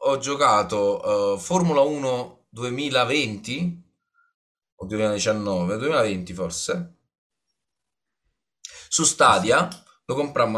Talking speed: 80 wpm